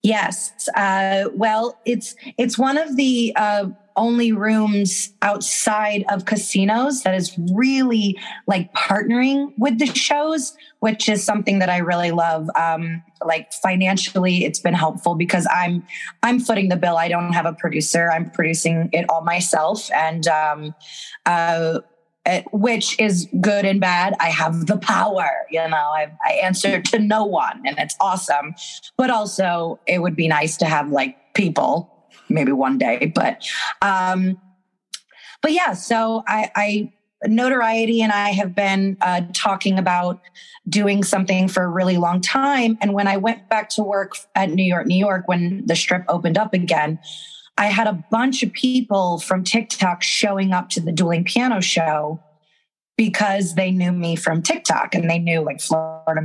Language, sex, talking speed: English, female, 165 wpm